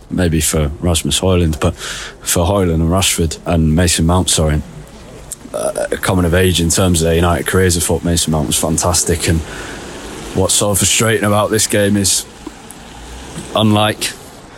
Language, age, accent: English, 20-39, British